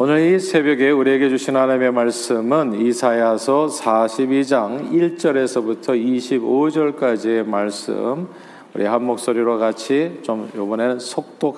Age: 40-59